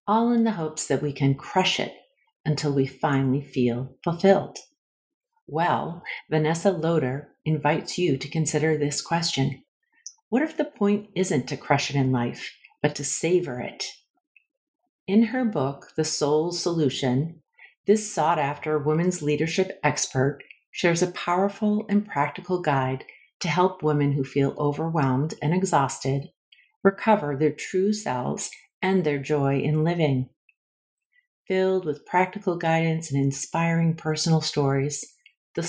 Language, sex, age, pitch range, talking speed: English, female, 40-59, 140-185 Hz, 135 wpm